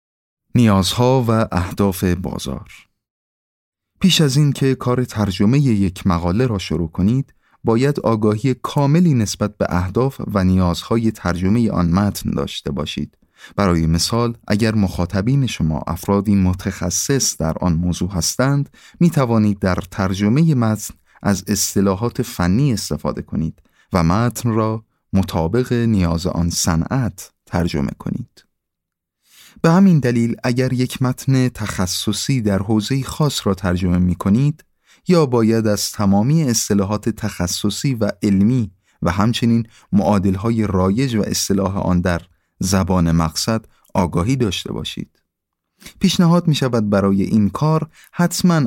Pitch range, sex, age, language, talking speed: 90-125 Hz, male, 30-49, Persian, 125 wpm